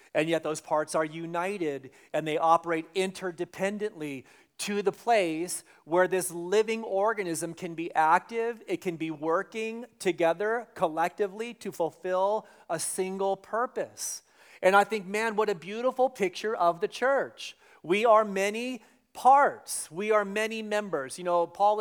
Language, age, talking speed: English, 40-59, 145 wpm